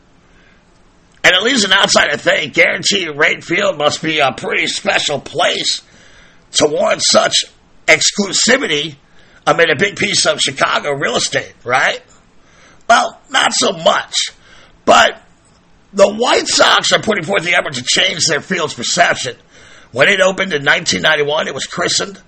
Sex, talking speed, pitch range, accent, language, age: male, 145 wpm, 145-170 Hz, American, English, 50-69